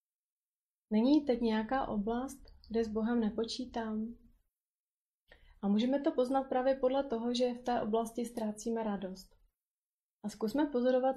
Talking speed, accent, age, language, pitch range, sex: 130 wpm, native, 30-49, Czech, 215-245 Hz, female